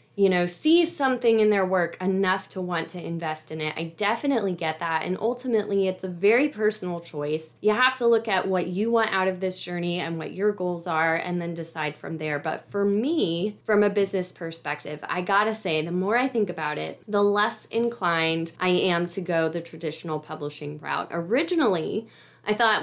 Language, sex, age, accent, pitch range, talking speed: English, female, 20-39, American, 175-230 Hz, 205 wpm